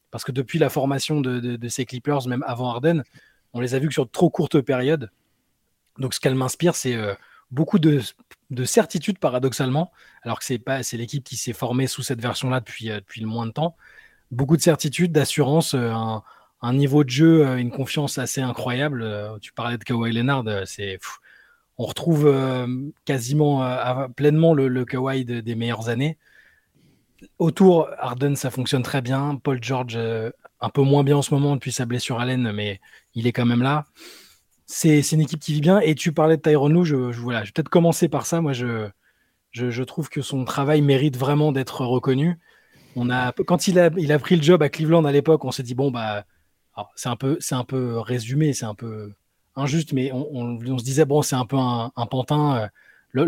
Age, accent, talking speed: 20-39, French, 205 wpm